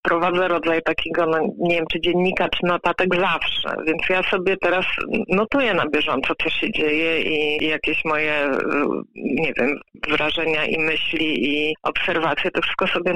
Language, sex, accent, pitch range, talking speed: Polish, female, native, 170-195 Hz, 160 wpm